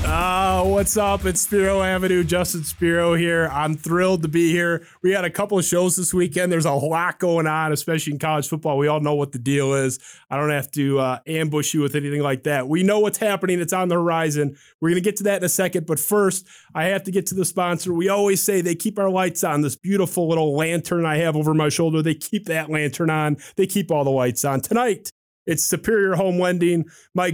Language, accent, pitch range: English, American, 155-185 Hz